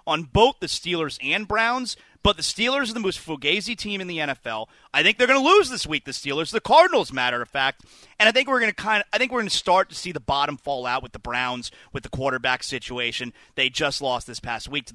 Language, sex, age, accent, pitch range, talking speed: English, male, 30-49, American, 140-230 Hz, 255 wpm